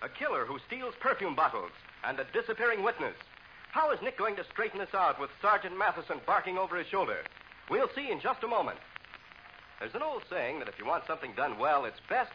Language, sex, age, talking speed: English, male, 60-79, 215 wpm